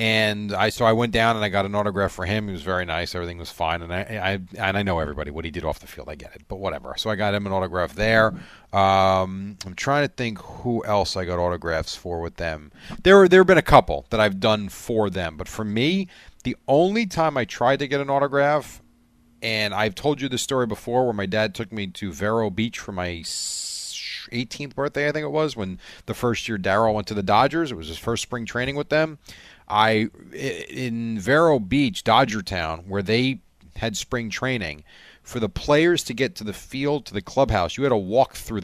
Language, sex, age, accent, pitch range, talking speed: English, male, 40-59, American, 95-130 Hz, 235 wpm